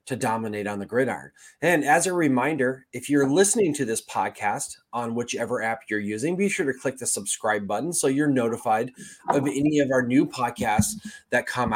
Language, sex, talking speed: English, male, 195 wpm